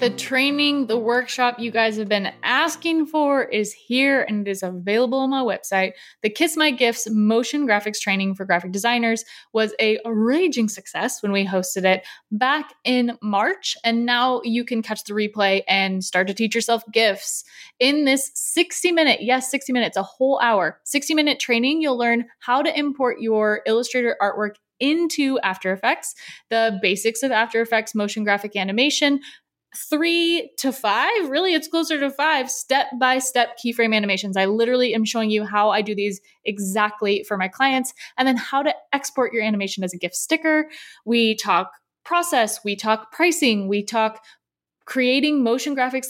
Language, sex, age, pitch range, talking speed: English, female, 20-39, 205-265 Hz, 175 wpm